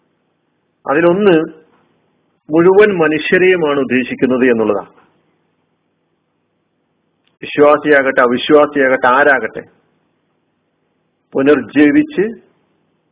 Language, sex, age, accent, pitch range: Malayalam, male, 50-69, native, 135-175 Hz